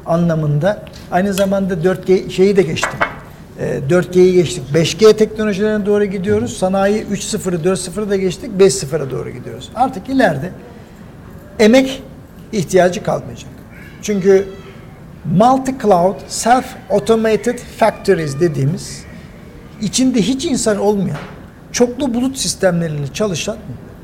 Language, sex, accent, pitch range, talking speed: Turkish, male, native, 175-215 Hz, 100 wpm